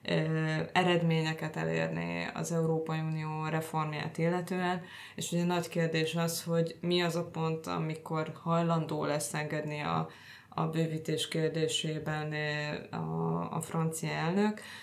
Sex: female